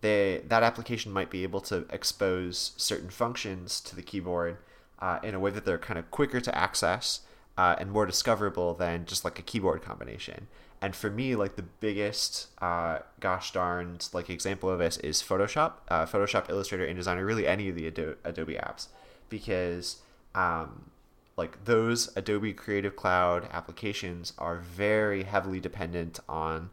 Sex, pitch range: male, 90-105 Hz